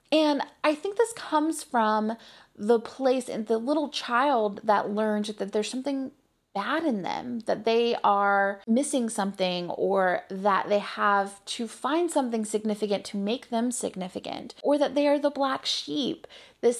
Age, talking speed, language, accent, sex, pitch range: 30-49, 160 wpm, English, American, female, 195-260 Hz